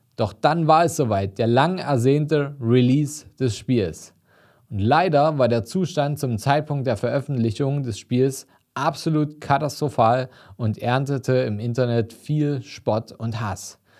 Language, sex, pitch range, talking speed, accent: German, male, 115-150 Hz, 135 wpm, German